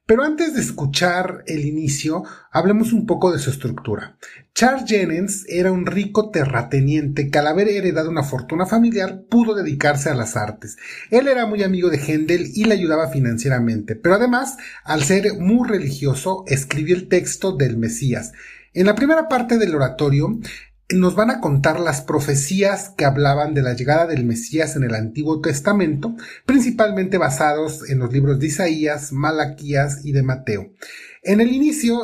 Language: Spanish